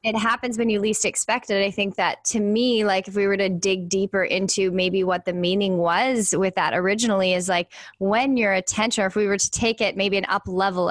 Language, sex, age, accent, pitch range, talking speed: English, female, 10-29, American, 195-235 Hz, 240 wpm